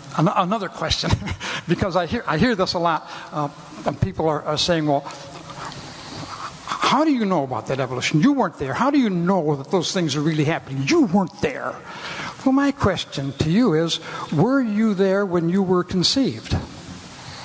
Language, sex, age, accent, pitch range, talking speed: Filipino, male, 60-79, American, 155-215 Hz, 180 wpm